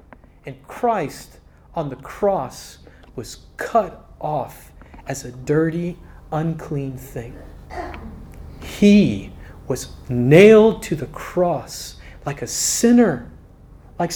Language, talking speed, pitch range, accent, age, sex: English, 100 wpm, 145-195 Hz, American, 30-49, male